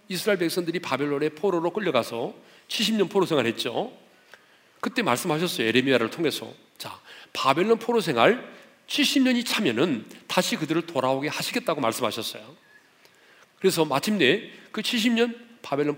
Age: 40-59